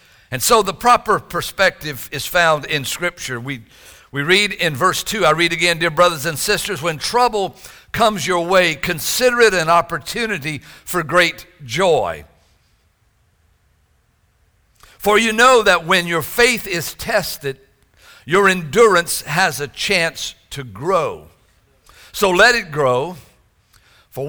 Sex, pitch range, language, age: male, 125-190 Hz, English, 60-79